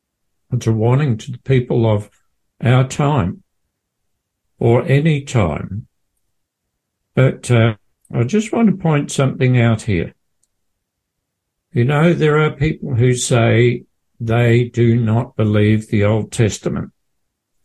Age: 60-79